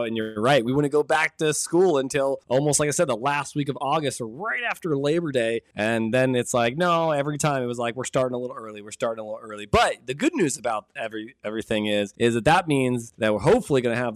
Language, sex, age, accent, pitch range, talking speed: English, male, 20-39, American, 120-165 Hz, 265 wpm